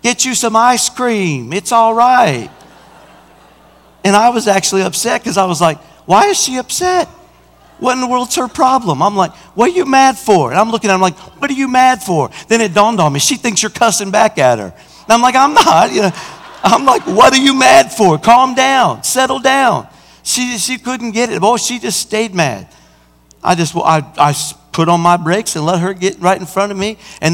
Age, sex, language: 50-69, male, English